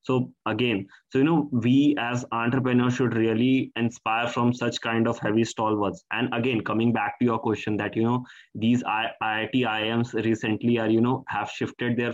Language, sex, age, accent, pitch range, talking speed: Hindi, male, 20-39, native, 115-135 Hz, 205 wpm